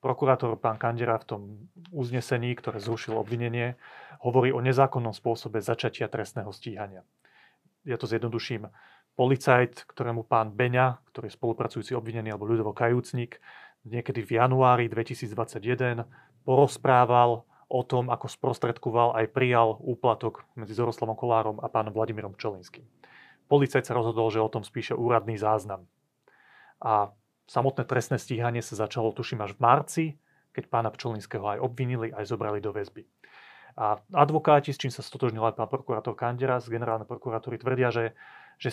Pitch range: 115-135 Hz